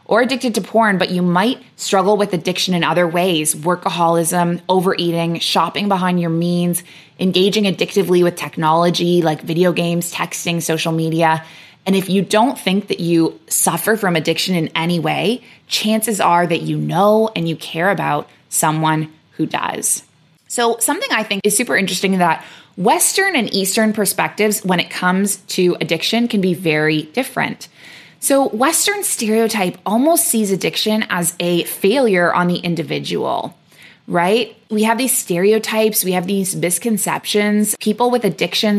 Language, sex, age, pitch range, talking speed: English, female, 20-39, 170-215 Hz, 155 wpm